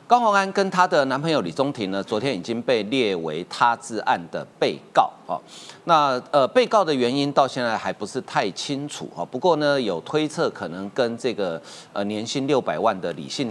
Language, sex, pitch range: Chinese, male, 125-175 Hz